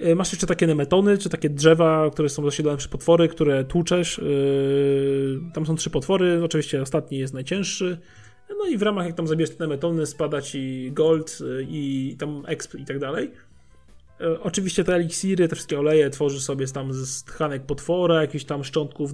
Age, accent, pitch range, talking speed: 20-39, native, 145-165 Hz, 170 wpm